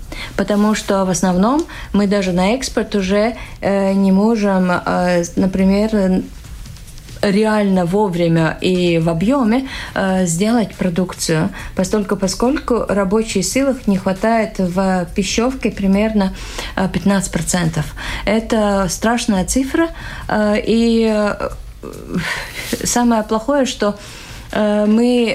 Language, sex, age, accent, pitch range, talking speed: Russian, female, 30-49, native, 185-225 Hz, 85 wpm